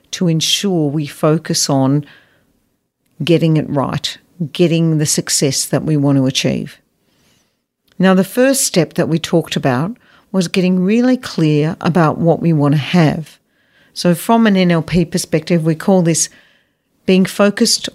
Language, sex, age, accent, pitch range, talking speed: English, female, 50-69, Australian, 150-185 Hz, 145 wpm